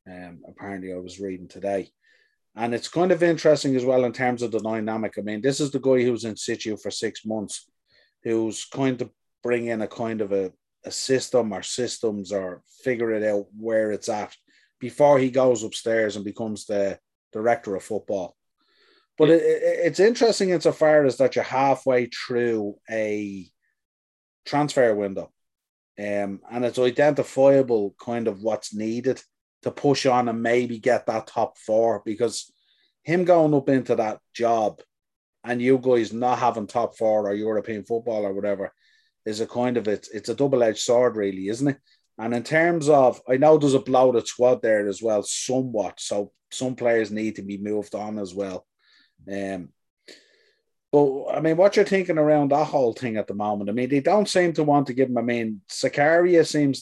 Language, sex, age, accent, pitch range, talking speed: English, male, 30-49, Irish, 105-135 Hz, 185 wpm